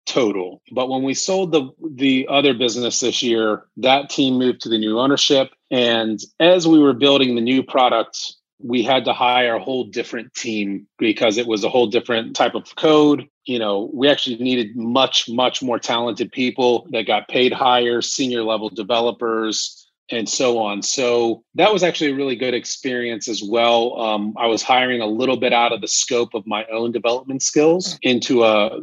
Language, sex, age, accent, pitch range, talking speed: English, male, 30-49, American, 115-135 Hz, 190 wpm